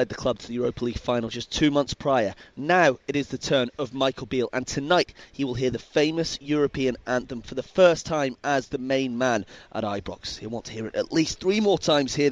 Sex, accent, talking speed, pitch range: male, British, 240 wpm, 125-170 Hz